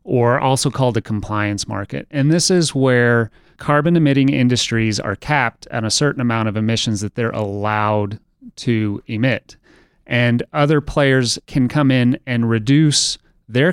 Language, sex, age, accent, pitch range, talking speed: English, male, 30-49, American, 105-130 Hz, 155 wpm